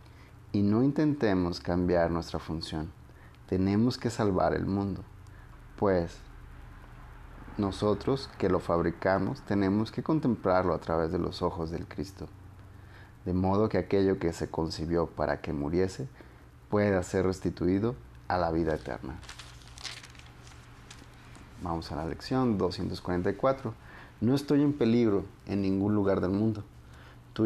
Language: Spanish